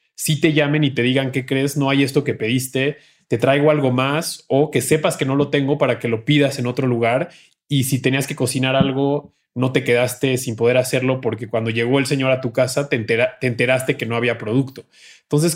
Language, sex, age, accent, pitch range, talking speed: Spanish, male, 20-39, Mexican, 125-145 Hz, 230 wpm